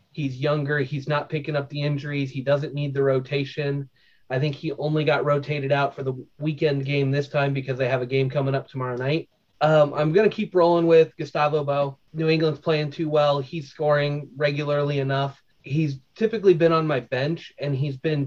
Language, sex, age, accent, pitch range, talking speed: English, male, 30-49, American, 135-155 Hz, 205 wpm